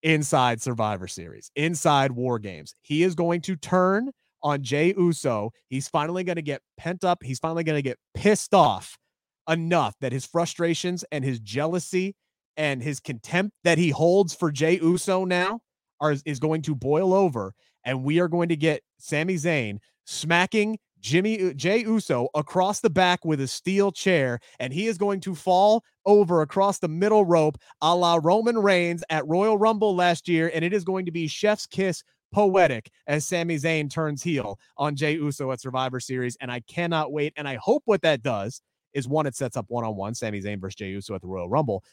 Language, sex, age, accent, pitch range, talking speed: English, male, 30-49, American, 130-180 Hz, 195 wpm